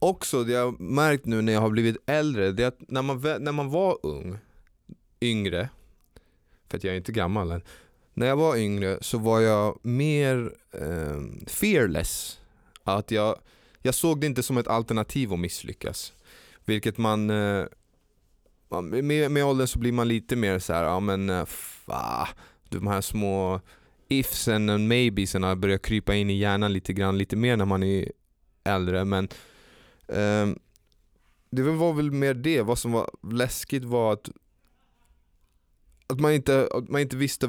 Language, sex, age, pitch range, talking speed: Swedish, male, 20-39, 95-130 Hz, 165 wpm